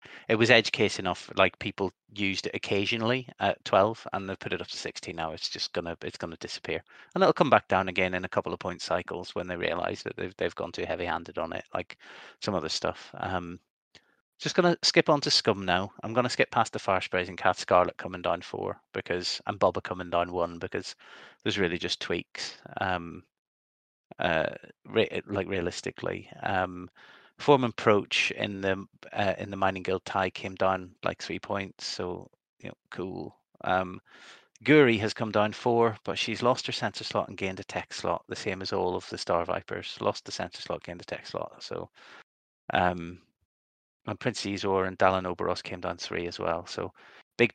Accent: British